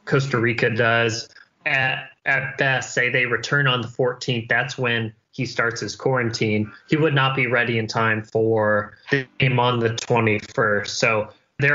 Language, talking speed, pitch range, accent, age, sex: English, 170 wpm, 115-135 Hz, American, 20-39, male